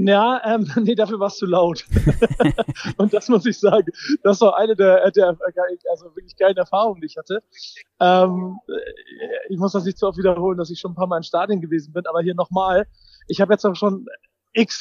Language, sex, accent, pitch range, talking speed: German, male, German, 180-215 Hz, 210 wpm